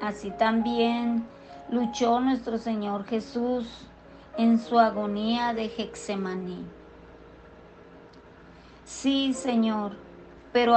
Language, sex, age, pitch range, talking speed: Spanish, female, 40-59, 210-250 Hz, 80 wpm